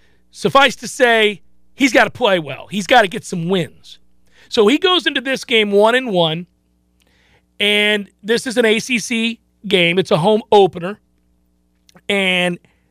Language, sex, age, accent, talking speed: English, male, 40-59, American, 160 wpm